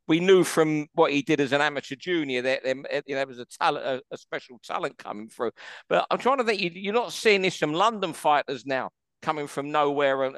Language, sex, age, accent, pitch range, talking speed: English, male, 50-69, British, 140-175 Hz, 220 wpm